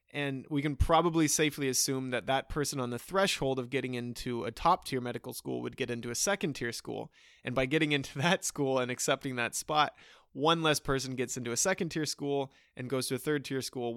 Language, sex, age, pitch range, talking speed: English, male, 20-39, 125-155 Hz, 210 wpm